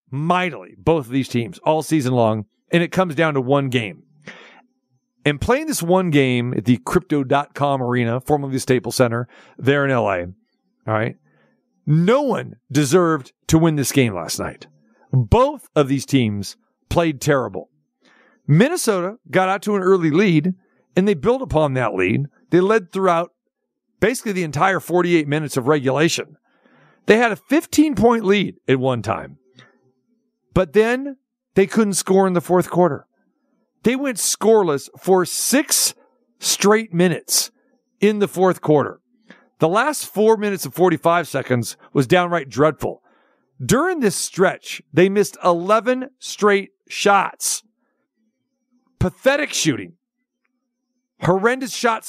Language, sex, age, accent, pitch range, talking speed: English, male, 50-69, American, 140-225 Hz, 140 wpm